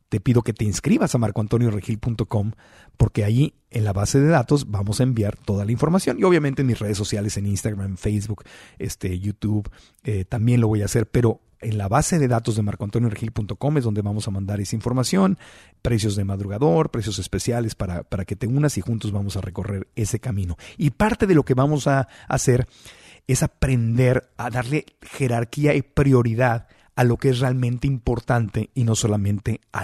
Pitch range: 105-135 Hz